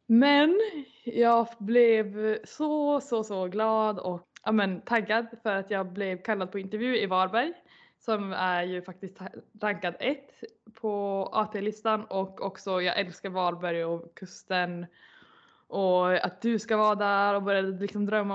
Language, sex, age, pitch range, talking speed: Swedish, female, 20-39, 190-235 Hz, 145 wpm